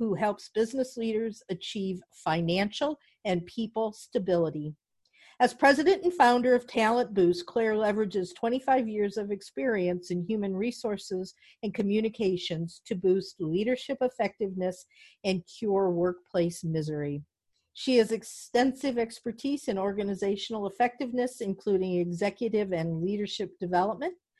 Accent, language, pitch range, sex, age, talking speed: American, English, 195-250 Hz, female, 50-69, 115 wpm